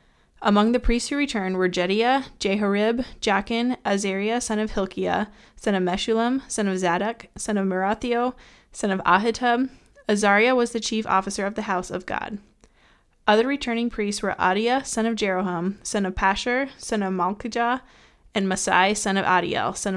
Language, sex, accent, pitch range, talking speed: English, female, American, 195-235 Hz, 165 wpm